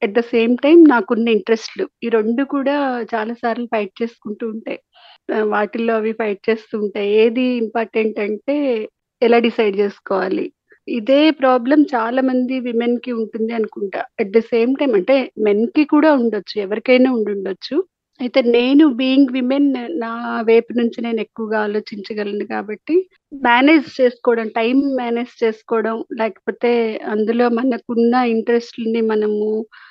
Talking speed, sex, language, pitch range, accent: 180 wpm, female, Telugu, 220-265 Hz, native